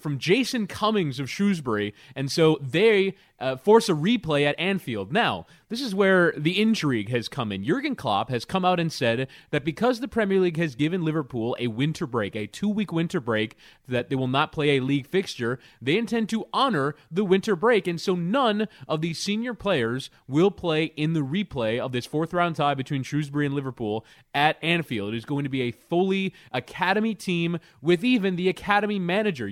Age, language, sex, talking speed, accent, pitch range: 30-49, English, male, 195 wpm, American, 135-180 Hz